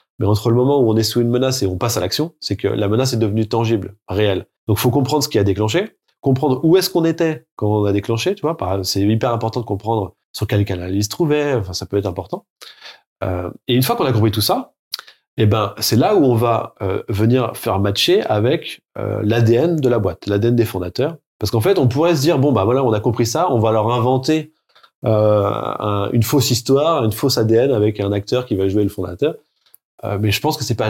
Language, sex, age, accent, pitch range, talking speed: French, male, 20-39, French, 105-130 Hz, 255 wpm